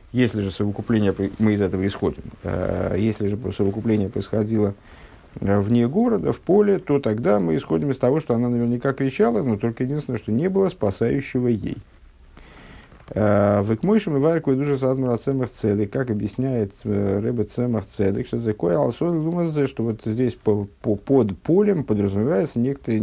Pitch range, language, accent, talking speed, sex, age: 95-125 Hz, Russian, native, 135 wpm, male, 50-69